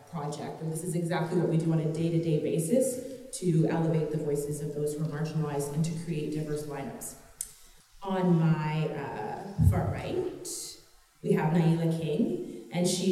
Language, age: English, 30-49